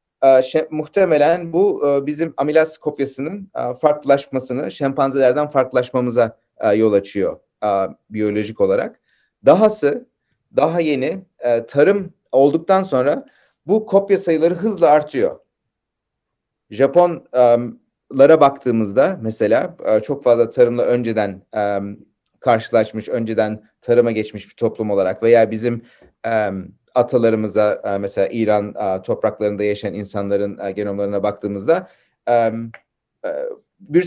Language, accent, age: Turkish, native, 40-59